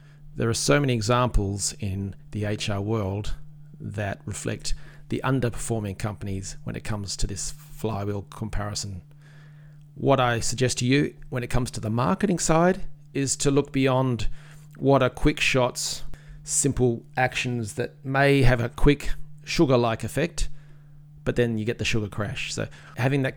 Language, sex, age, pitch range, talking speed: English, male, 40-59, 110-150 Hz, 155 wpm